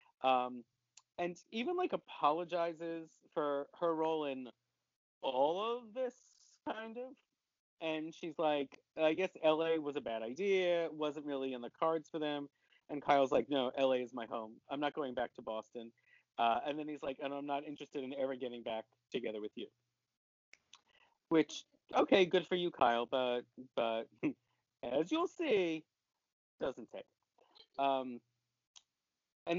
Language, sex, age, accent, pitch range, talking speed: English, male, 30-49, American, 130-170 Hz, 155 wpm